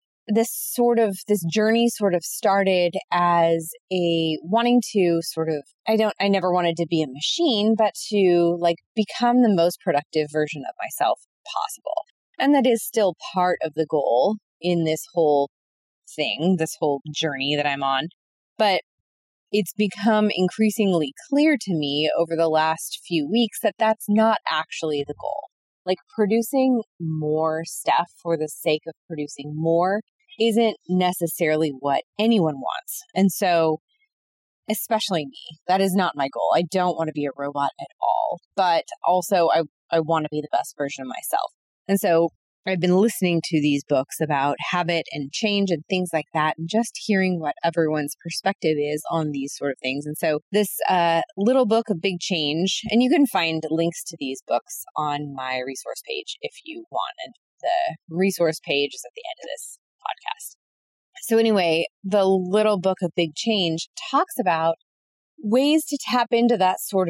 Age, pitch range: 20-39, 155-215 Hz